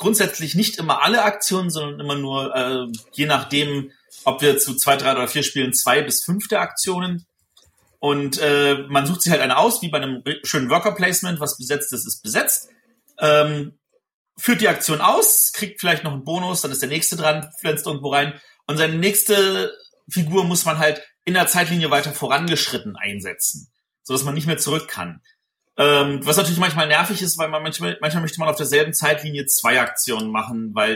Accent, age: German, 40-59